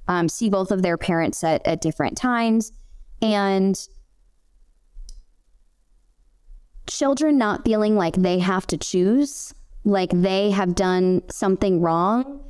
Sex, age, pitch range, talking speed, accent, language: female, 20-39, 180-220 Hz, 120 wpm, American, English